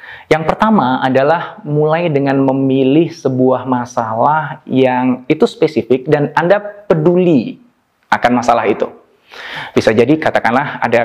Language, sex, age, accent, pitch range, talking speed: Indonesian, male, 20-39, native, 125-200 Hz, 115 wpm